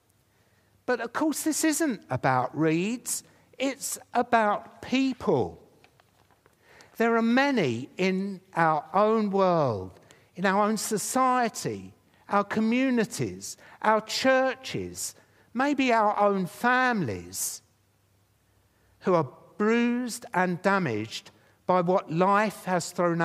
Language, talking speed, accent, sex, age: English, 100 wpm, British, male, 60-79